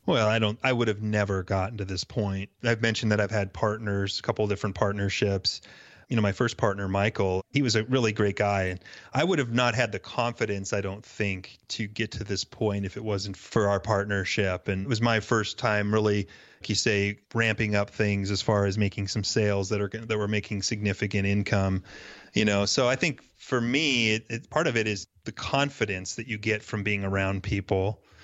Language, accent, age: English, American, 30-49